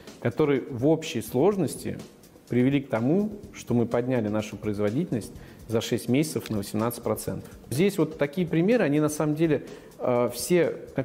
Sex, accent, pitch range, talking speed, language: male, native, 115-145 Hz, 145 wpm, Russian